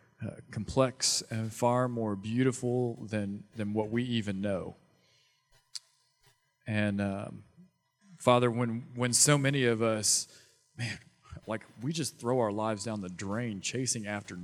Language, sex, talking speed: English, male, 135 wpm